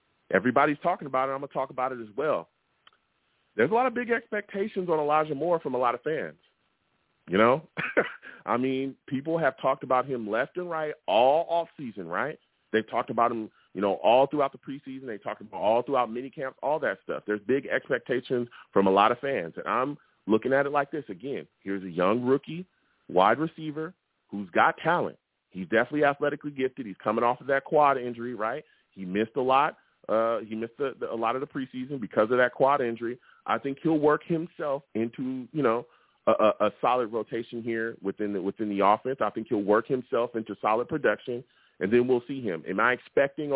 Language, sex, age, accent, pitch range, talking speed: English, male, 30-49, American, 115-150 Hz, 210 wpm